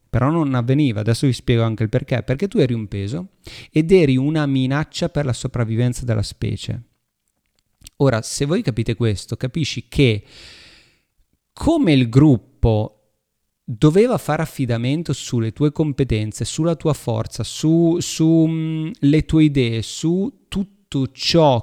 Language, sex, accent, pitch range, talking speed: Italian, male, native, 110-145 Hz, 135 wpm